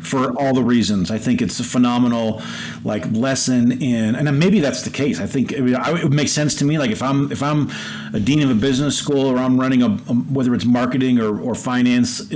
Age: 40-59